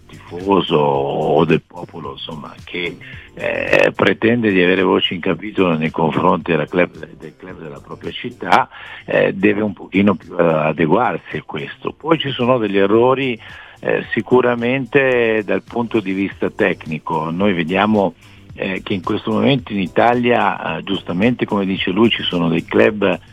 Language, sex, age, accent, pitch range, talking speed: Italian, male, 60-79, native, 90-115 Hz, 155 wpm